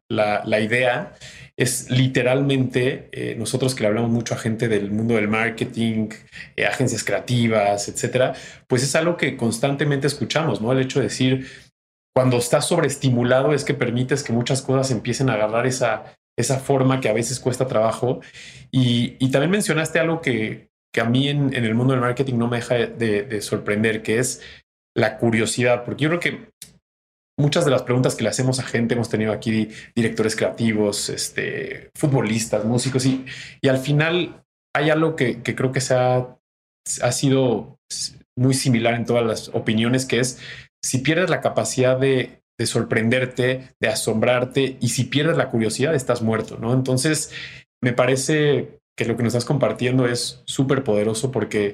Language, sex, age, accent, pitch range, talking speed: Spanish, male, 30-49, Mexican, 115-135 Hz, 175 wpm